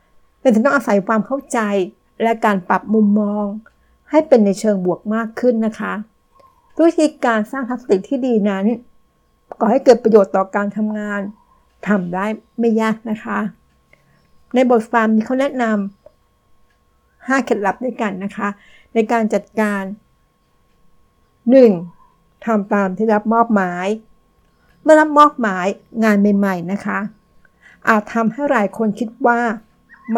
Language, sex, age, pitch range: Thai, female, 60-79, 205-240 Hz